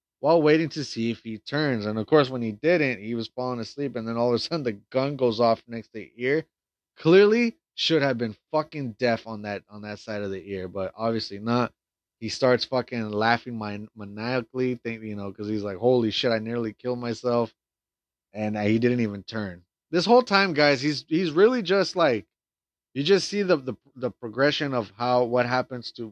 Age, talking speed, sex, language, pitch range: 20-39, 210 wpm, male, English, 110-135 Hz